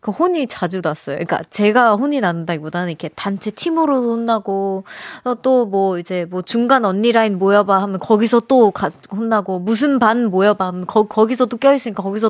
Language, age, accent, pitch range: Korean, 20-39, native, 185-240 Hz